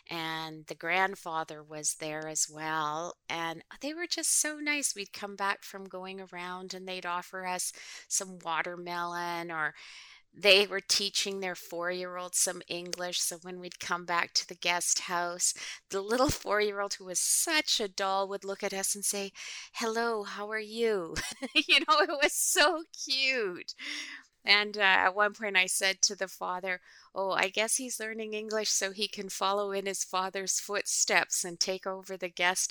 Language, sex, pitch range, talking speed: English, female, 175-205 Hz, 175 wpm